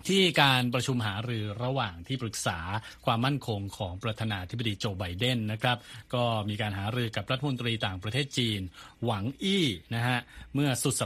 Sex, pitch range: male, 105-130 Hz